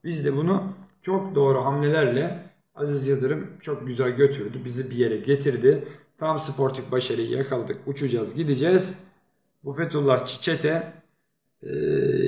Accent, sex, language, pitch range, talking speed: native, male, Turkish, 125-165 Hz, 120 wpm